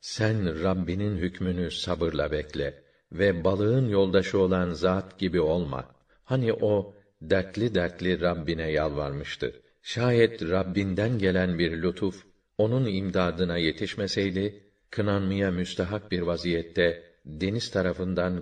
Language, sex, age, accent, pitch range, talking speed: Turkish, male, 50-69, native, 90-100 Hz, 105 wpm